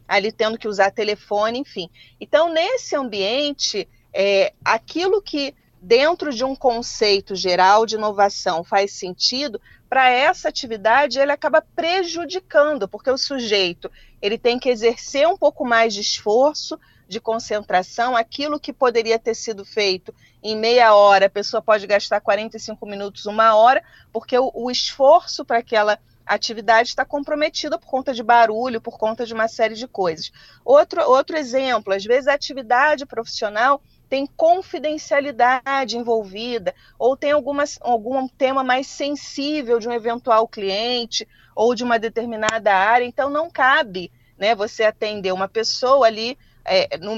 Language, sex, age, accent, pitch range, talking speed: Portuguese, female, 30-49, Brazilian, 210-275 Hz, 150 wpm